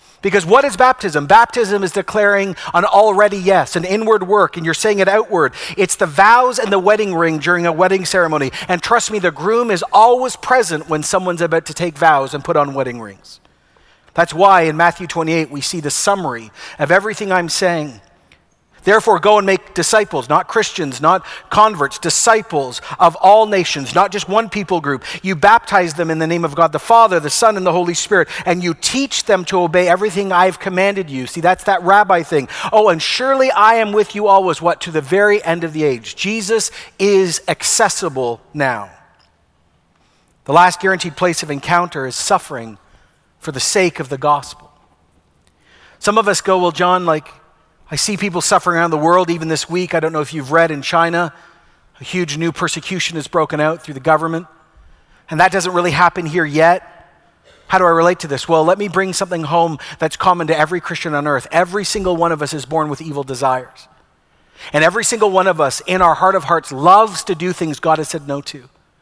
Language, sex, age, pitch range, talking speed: English, male, 50-69, 155-195 Hz, 205 wpm